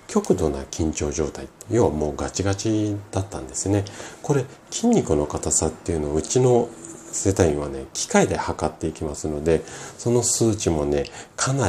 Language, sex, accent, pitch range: Japanese, male, native, 75-110 Hz